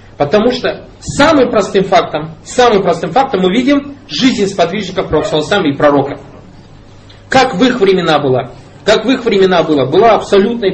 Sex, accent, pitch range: male, native, 160-220 Hz